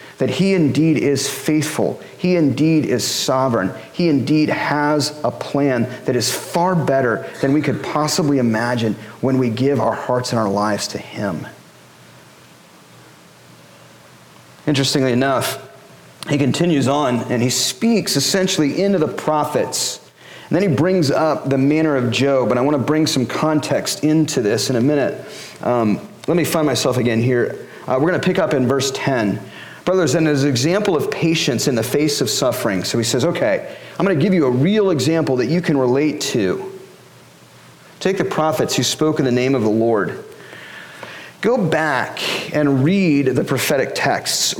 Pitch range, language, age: 125-155 Hz, English, 30-49